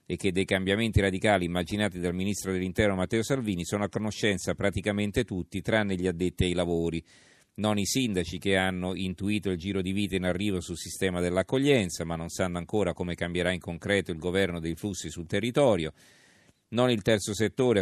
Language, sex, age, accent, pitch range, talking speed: Italian, male, 40-59, native, 90-105 Hz, 180 wpm